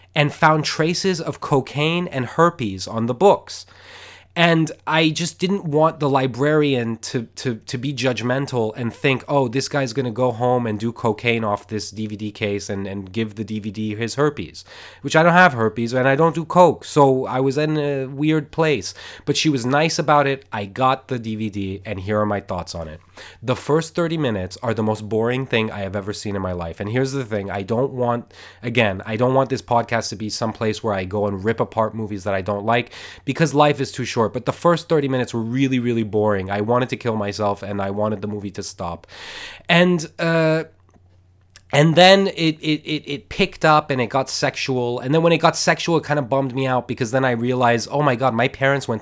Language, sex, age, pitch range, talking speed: English, male, 20-39, 110-150 Hz, 225 wpm